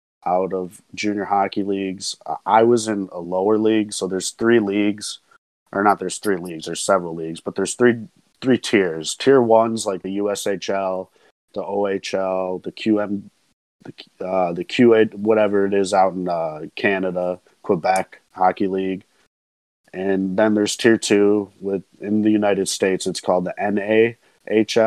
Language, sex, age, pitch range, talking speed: English, male, 30-49, 95-105 Hz, 180 wpm